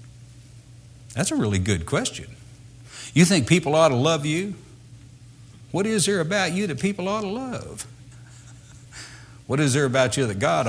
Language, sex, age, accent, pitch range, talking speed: English, male, 60-79, American, 110-130 Hz, 165 wpm